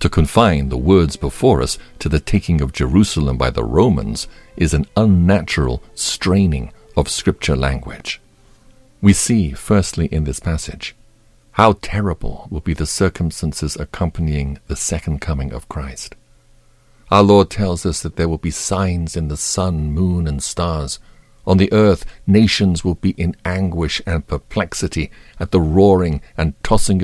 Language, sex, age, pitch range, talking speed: English, male, 50-69, 75-100 Hz, 155 wpm